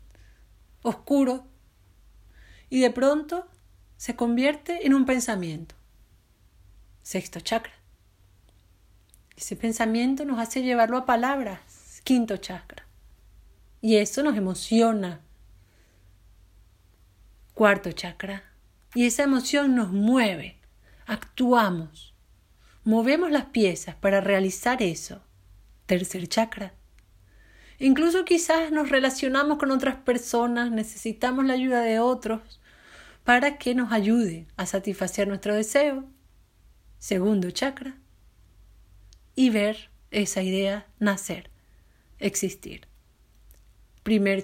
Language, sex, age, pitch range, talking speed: Spanish, female, 40-59, 165-255 Hz, 95 wpm